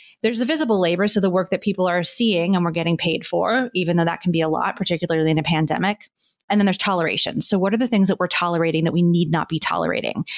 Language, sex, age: English, female, 30-49